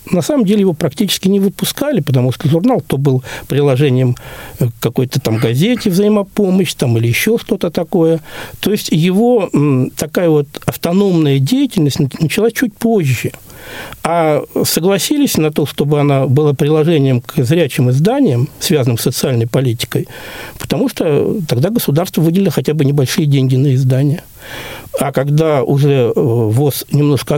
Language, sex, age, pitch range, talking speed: Russian, male, 60-79, 130-190 Hz, 140 wpm